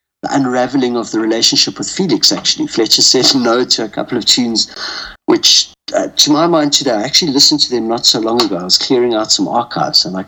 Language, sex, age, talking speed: English, male, 60-79, 220 wpm